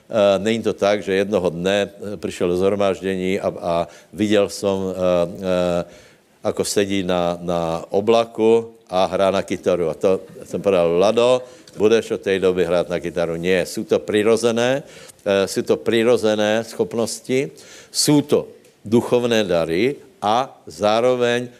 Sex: male